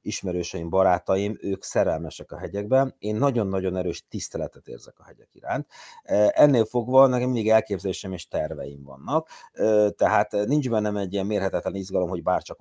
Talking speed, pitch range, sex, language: 150 wpm, 90-115 Hz, male, Hungarian